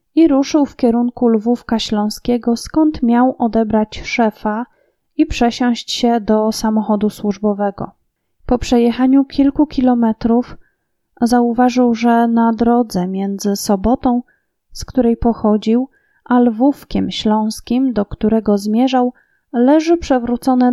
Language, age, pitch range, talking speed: Polish, 20-39, 210-240 Hz, 105 wpm